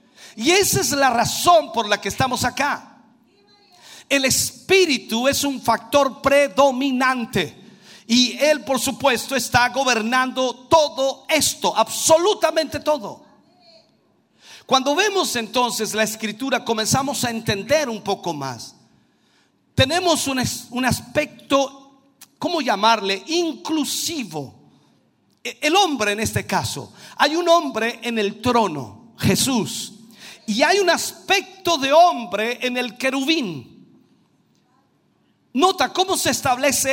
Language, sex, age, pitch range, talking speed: Spanish, male, 50-69, 225-300 Hz, 110 wpm